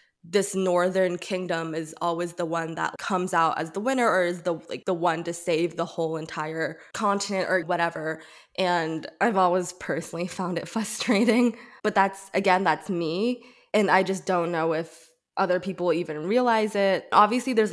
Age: 20-39